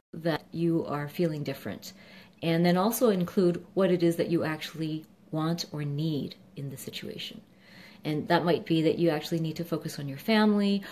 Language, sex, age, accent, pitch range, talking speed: English, female, 40-59, American, 165-210 Hz, 185 wpm